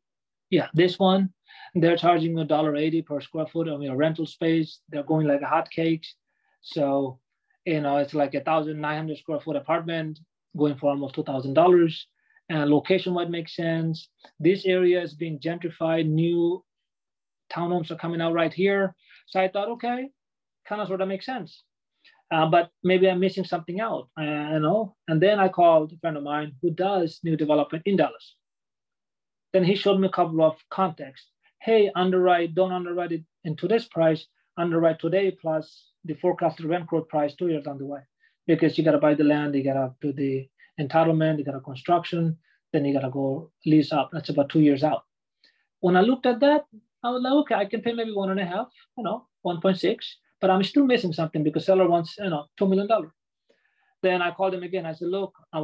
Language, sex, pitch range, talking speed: English, male, 155-190 Hz, 195 wpm